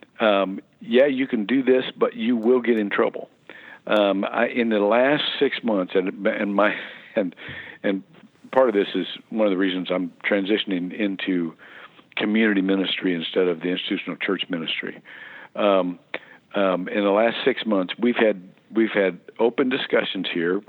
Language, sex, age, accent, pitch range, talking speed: English, male, 50-69, American, 95-115 Hz, 165 wpm